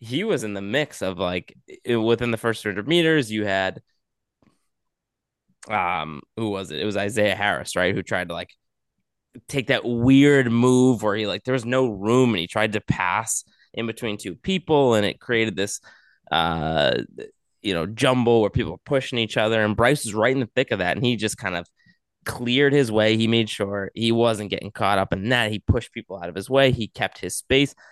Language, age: English, 20-39